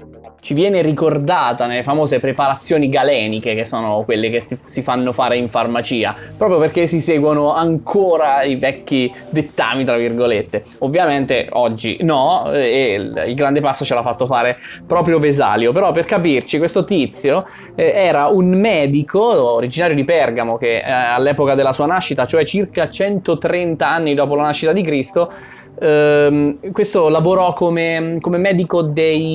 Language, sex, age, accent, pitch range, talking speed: Italian, male, 20-39, native, 125-170 Hz, 145 wpm